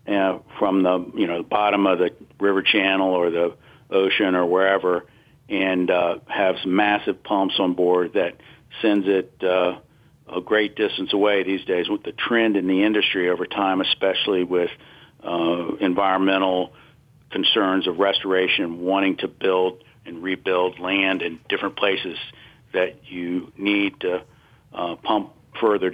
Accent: American